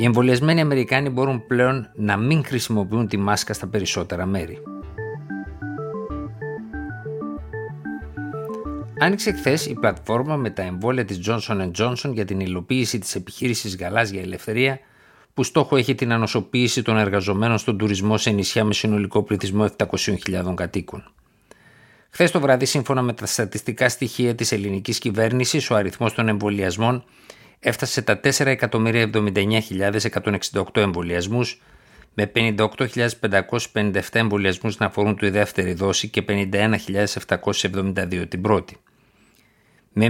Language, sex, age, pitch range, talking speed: Greek, male, 50-69, 100-120 Hz, 120 wpm